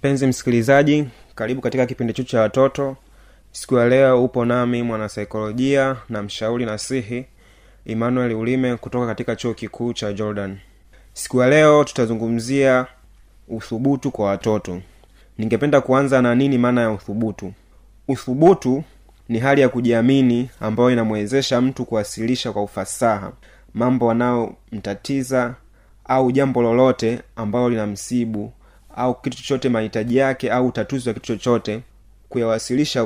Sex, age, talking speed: male, 20-39, 125 wpm